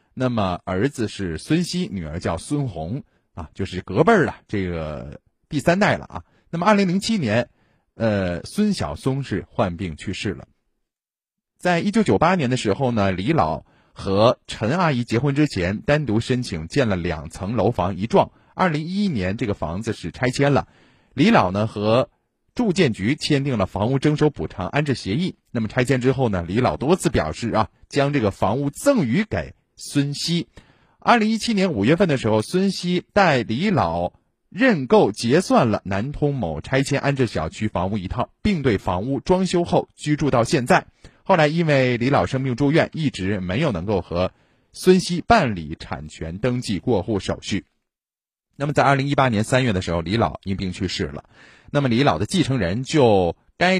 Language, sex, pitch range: Chinese, male, 95-150 Hz